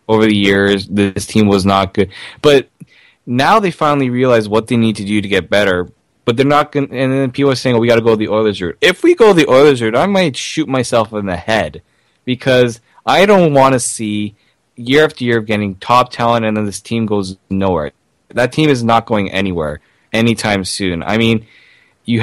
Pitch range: 100-125 Hz